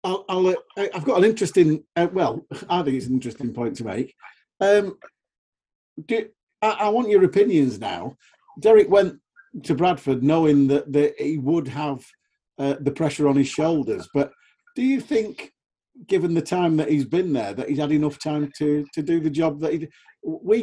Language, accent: English, British